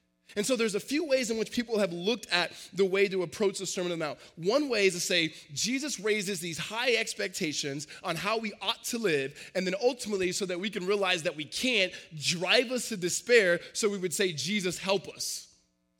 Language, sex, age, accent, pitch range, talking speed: English, male, 20-39, American, 130-185 Hz, 220 wpm